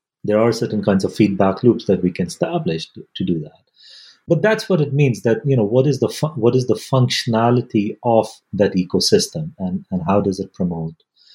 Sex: male